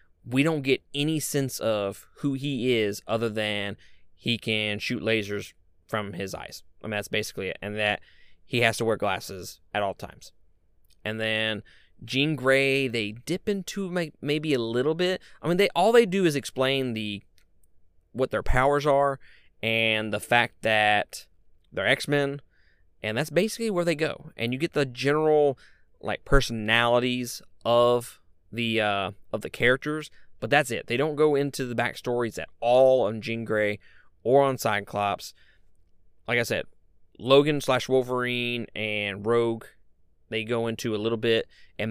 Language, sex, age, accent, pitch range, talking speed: English, male, 20-39, American, 100-135 Hz, 165 wpm